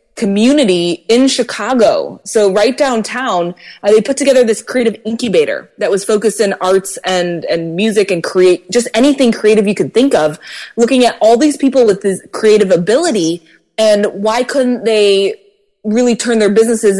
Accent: American